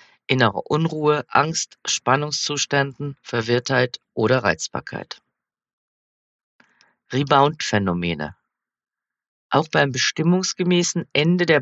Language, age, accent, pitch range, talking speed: German, 40-59, German, 120-165 Hz, 65 wpm